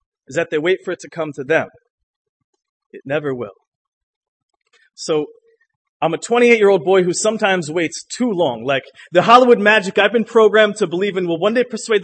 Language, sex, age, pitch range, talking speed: English, male, 30-49, 190-270 Hz, 185 wpm